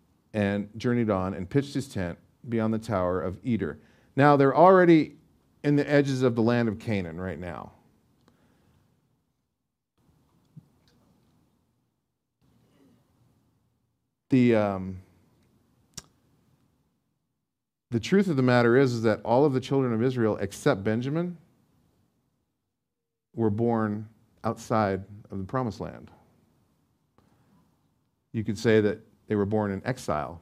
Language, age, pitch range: English, 40-59, 100-130 Hz